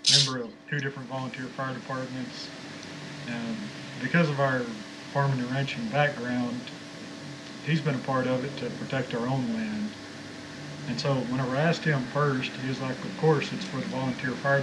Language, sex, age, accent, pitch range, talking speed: English, male, 40-59, American, 130-150 Hz, 175 wpm